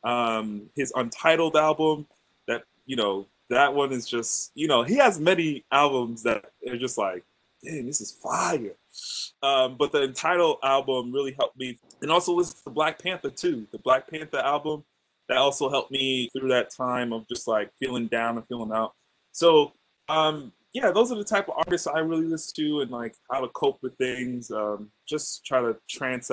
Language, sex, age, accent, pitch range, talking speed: English, male, 20-39, American, 125-170 Hz, 190 wpm